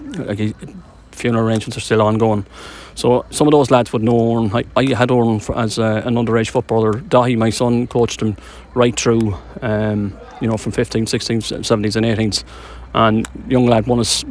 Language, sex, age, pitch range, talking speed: English, male, 30-49, 110-125 Hz, 180 wpm